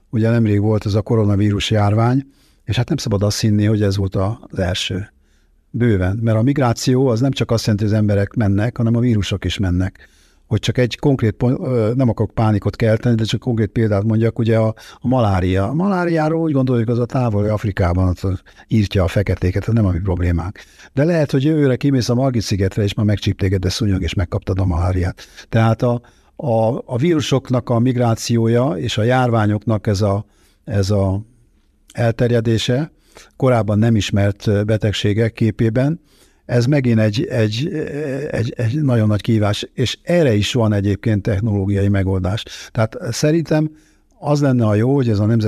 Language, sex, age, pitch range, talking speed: Hungarian, male, 50-69, 100-125 Hz, 170 wpm